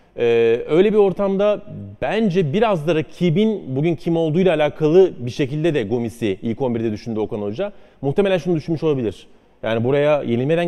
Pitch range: 135-185 Hz